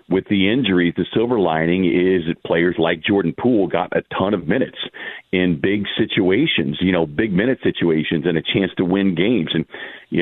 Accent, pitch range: American, 85-105 Hz